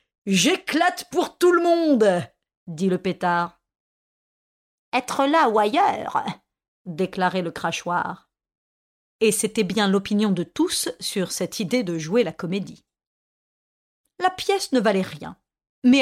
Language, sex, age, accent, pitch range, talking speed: French, female, 40-59, French, 180-250 Hz, 125 wpm